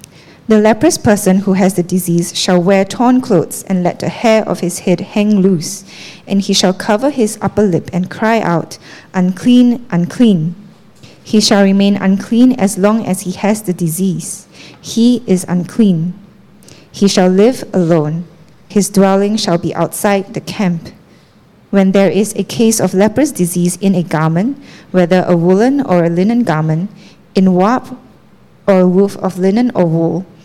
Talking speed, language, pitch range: 165 wpm, English, 175-210 Hz